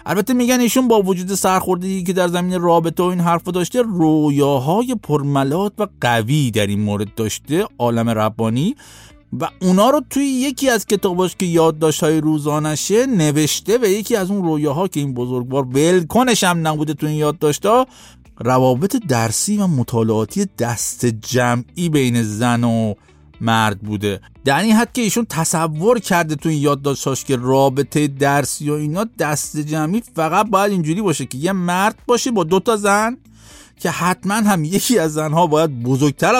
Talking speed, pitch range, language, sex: 165 wpm, 140-200 Hz, Persian, male